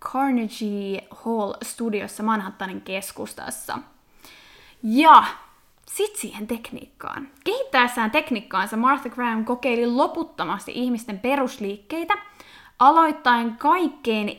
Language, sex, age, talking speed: Finnish, female, 20-39, 75 wpm